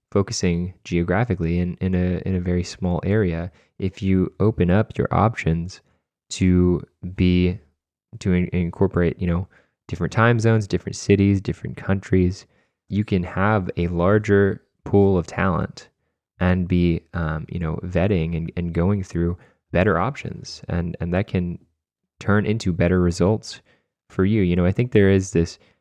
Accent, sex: American, male